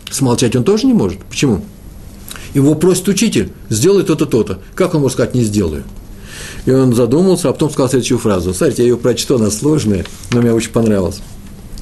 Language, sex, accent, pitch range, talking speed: Russian, male, native, 95-120 Hz, 185 wpm